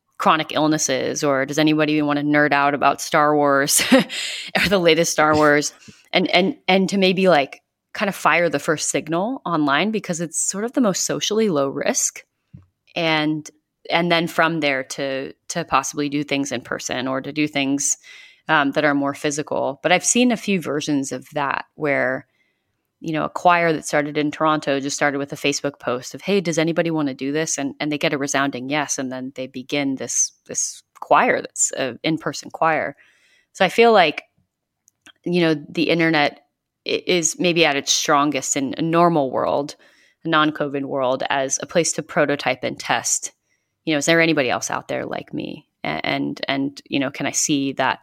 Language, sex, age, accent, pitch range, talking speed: English, female, 30-49, American, 140-165 Hz, 195 wpm